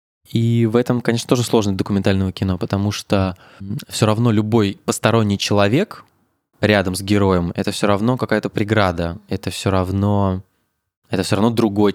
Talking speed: 150 wpm